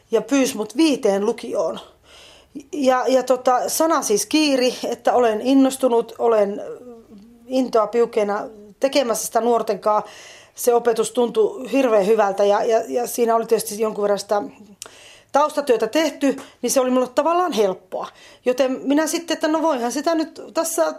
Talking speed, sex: 145 wpm, female